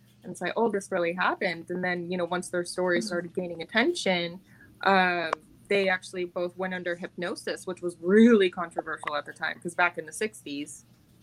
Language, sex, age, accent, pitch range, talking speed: English, female, 20-39, American, 170-195 Hz, 185 wpm